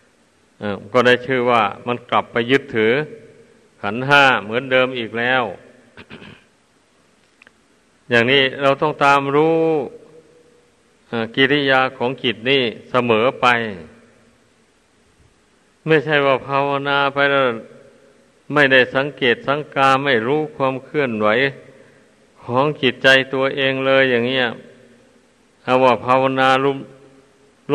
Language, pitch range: Thai, 120-140 Hz